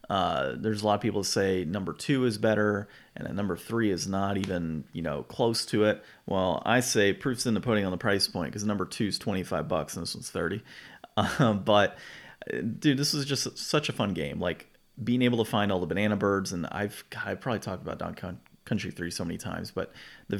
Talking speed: 230 wpm